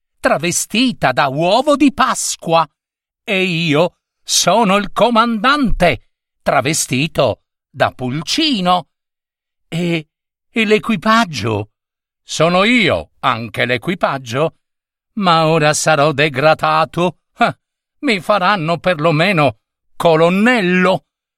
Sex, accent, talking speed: male, native, 80 wpm